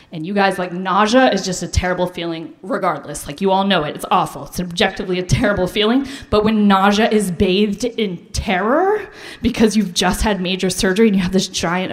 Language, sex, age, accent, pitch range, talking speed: English, female, 20-39, American, 180-245 Hz, 205 wpm